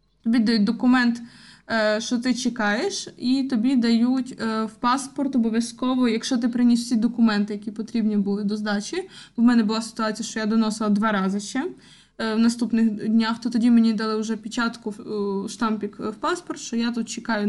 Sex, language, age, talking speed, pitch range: female, Ukrainian, 20-39, 165 wpm, 215-255 Hz